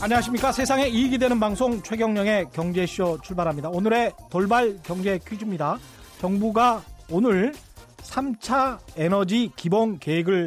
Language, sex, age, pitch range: Korean, male, 40-59, 175-240 Hz